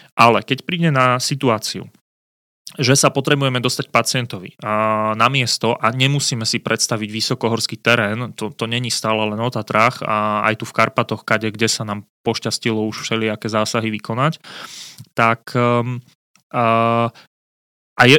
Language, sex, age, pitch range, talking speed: Slovak, male, 30-49, 110-125 Hz, 140 wpm